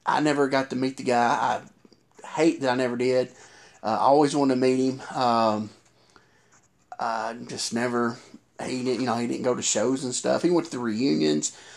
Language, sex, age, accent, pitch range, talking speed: English, male, 30-49, American, 120-155 Hz, 205 wpm